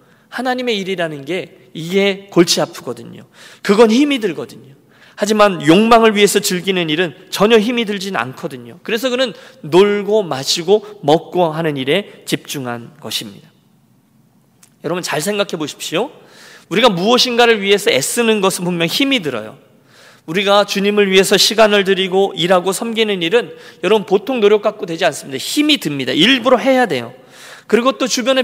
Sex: male